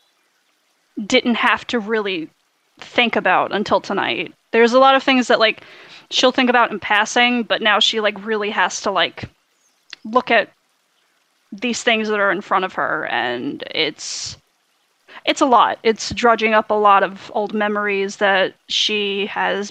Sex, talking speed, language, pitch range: female, 165 wpm, English, 205-240 Hz